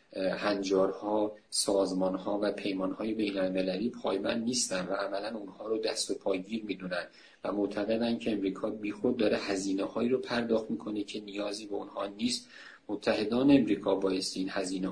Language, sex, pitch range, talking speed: Persian, male, 100-130 Hz, 150 wpm